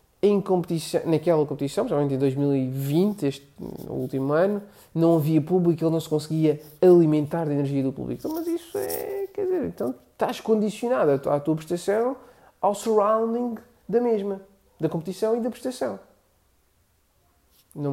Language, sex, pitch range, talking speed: Portuguese, male, 145-210 Hz, 155 wpm